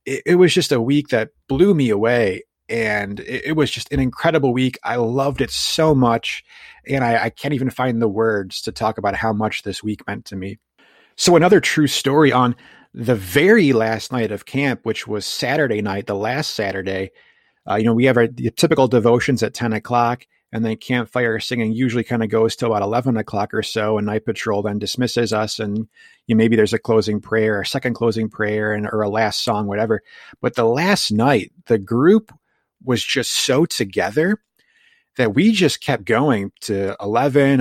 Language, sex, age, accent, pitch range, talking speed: English, male, 30-49, American, 110-140 Hz, 200 wpm